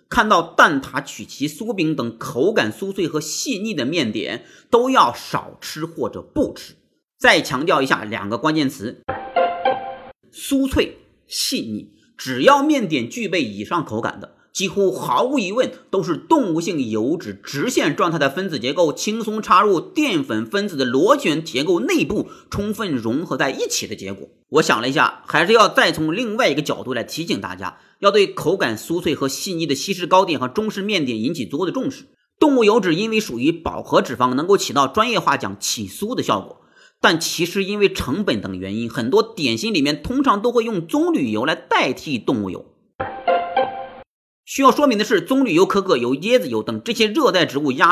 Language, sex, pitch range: Chinese, male, 175-275 Hz